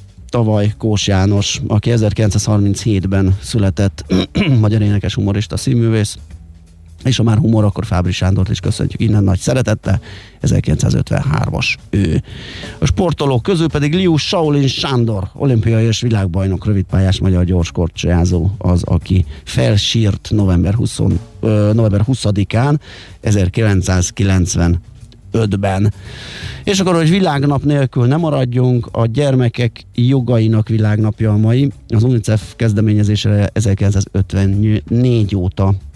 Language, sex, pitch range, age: Hungarian, male, 95-115 Hz, 30-49